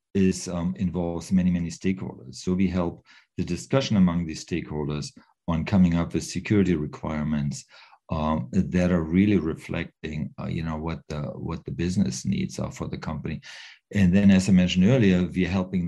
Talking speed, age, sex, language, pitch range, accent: 165 wpm, 50-69, male, English, 80-95 Hz, German